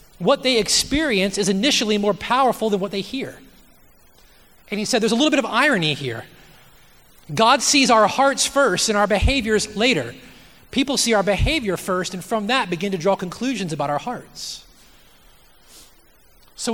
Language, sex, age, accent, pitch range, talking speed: English, male, 30-49, American, 195-255 Hz, 165 wpm